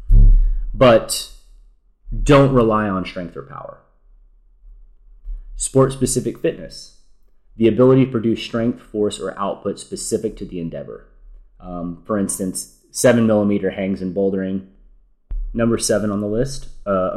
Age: 30-49